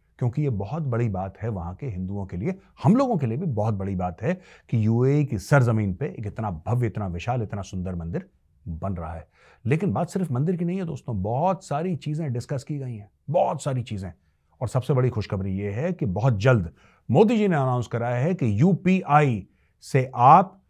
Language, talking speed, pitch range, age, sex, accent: Hindi, 210 wpm, 95-145 Hz, 30-49, male, native